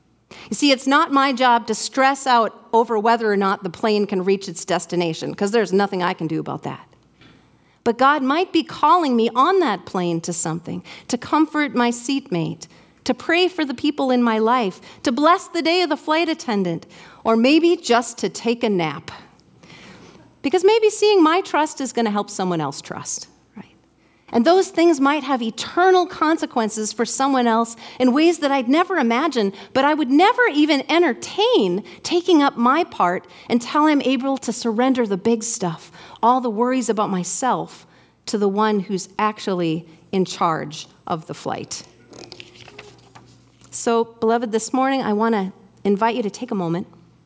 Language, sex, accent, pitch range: English, female, American, 195-285 Hz